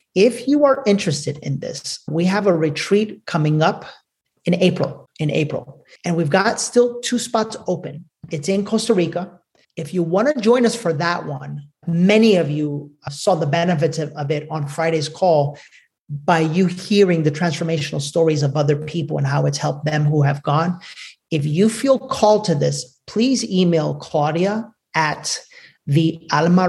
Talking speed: 170 wpm